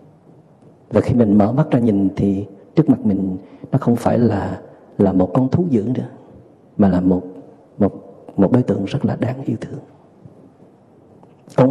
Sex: male